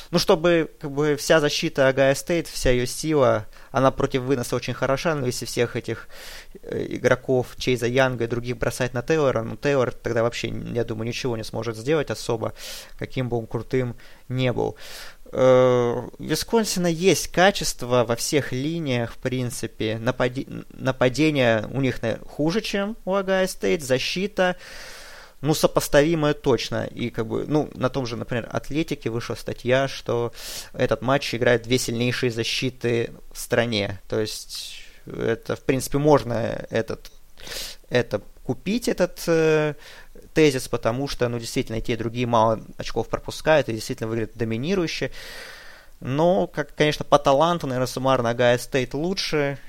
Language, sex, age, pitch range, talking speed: Russian, male, 20-39, 120-150 Hz, 145 wpm